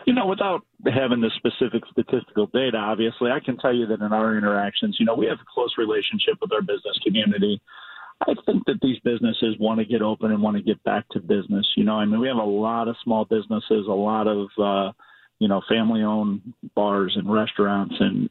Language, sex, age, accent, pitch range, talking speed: English, male, 40-59, American, 110-130 Hz, 215 wpm